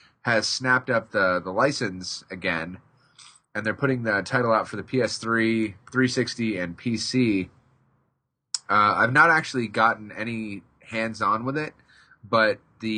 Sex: male